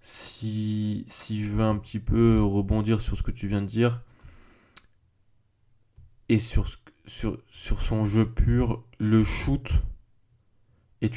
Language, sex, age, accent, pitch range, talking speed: French, male, 20-39, French, 100-115 Hz, 135 wpm